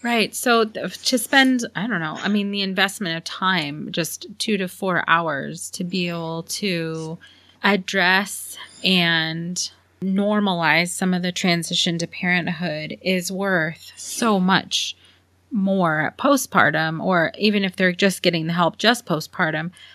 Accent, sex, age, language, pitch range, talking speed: American, female, 30-49, English, 165-195 Hz, 145 wpm